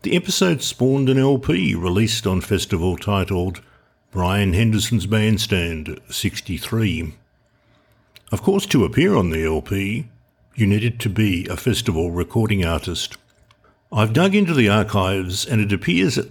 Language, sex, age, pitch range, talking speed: English, male, 60-79, 90-120 Hz, 135 wpm